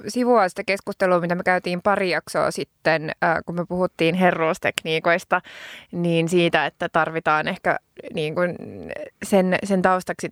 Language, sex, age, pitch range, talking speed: Finnish, female, 20-39, 165-200 Hz, 135 wpm